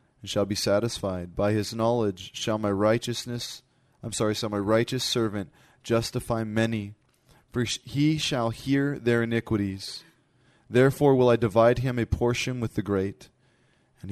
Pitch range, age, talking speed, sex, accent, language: 105-130 Hz, 20-39, 150 wpm, male, American, English